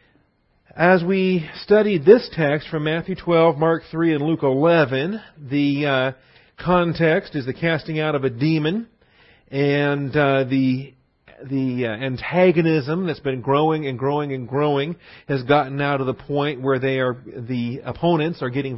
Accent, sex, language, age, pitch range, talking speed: American, male, English, 40-59, 130-155 Hz, 155 wpm